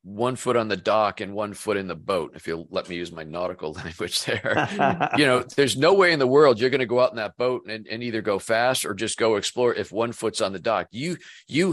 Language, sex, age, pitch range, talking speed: English, male, 50-69, 95-110 Hz, 265 wpm